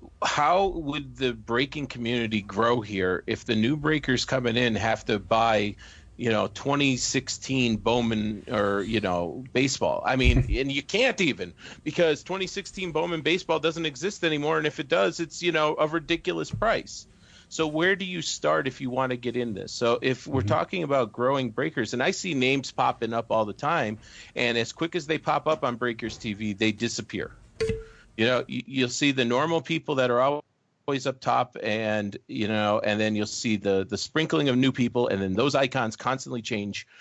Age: 40-59